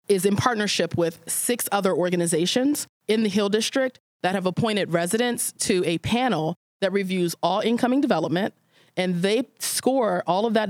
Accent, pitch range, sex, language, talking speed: American, 175-215 Hz, female, English, 165 wpm